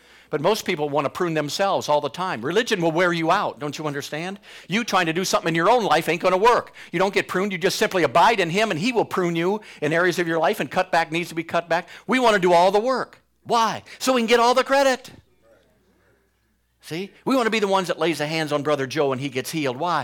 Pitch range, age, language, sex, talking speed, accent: 130-170 Hz, 50-69, English, male, 280 wpm, American